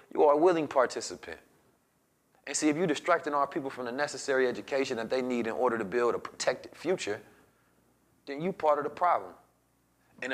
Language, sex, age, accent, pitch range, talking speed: English, male, 30-49, American, 140-190 Hz, 190 wpm